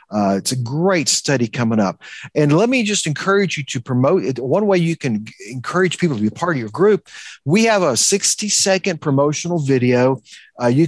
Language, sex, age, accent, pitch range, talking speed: English, male, 50-69, American, 130-170 Hz, 200 wpm